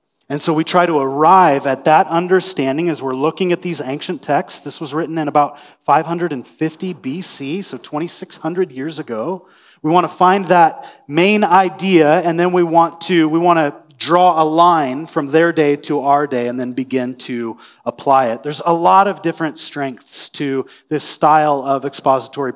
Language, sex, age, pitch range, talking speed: English, male, 30-49, 140-170 Hz, 180 wpm